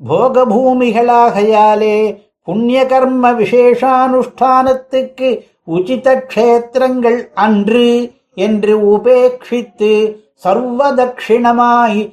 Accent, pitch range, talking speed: native, 220-260 Hz, 50 wpm